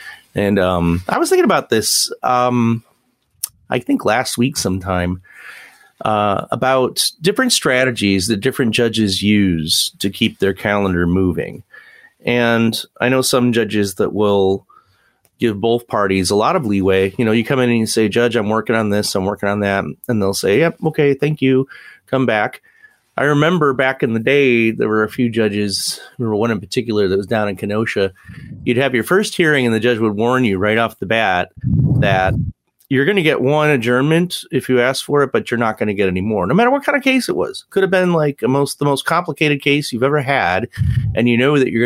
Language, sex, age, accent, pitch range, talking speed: English, male, 30-49, American, 100-135 Hz, 210 wpm